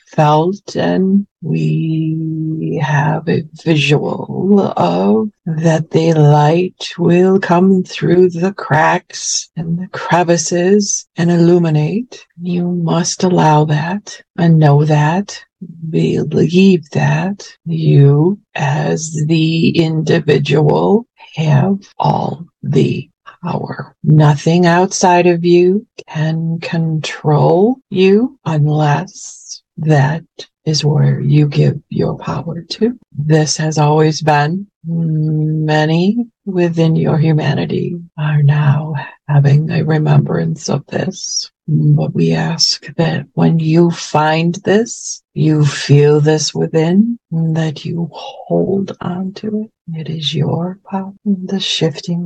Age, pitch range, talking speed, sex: 50-69, 155-185 Hz, 105 wpm, female